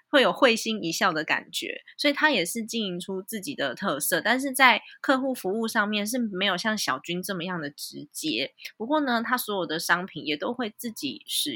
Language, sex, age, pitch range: Chinese, female, 20-39, 165-225 Hz